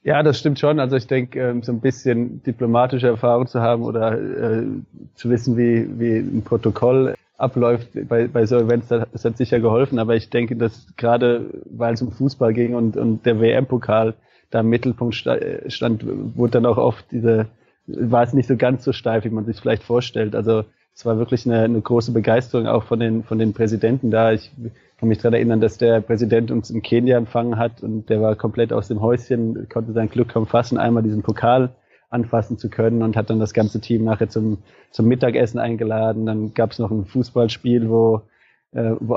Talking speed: 200 wpm